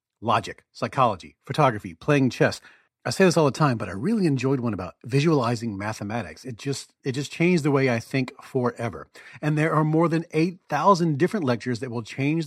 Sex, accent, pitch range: male, American, 115-145 Hz